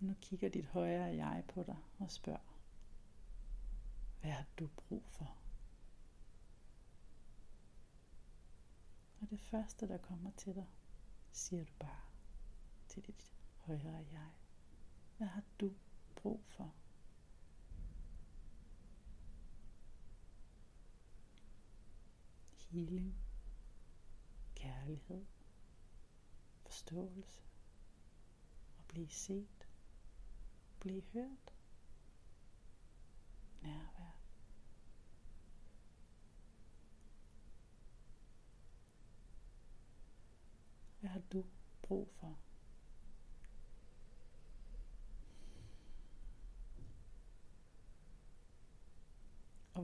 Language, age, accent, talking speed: Danish, 60-79, native, 60 wpm